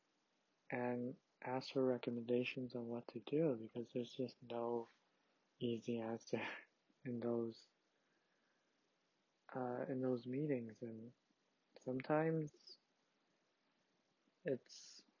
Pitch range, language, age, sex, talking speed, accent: 120-135 Hz, English, 20-39, male, 90 wpm, American